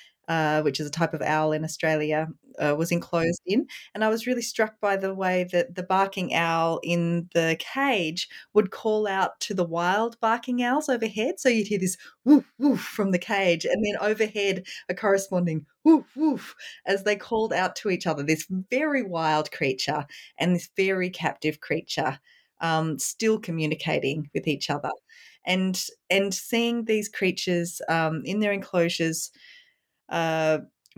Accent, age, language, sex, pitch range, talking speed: Australian, 30-49, English, female, 165-210 Hz, 165 wpm